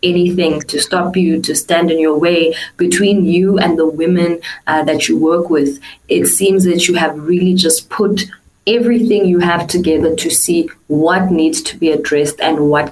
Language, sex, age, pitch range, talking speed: English, female, 20-39, 150-185 Hz, 185 wpm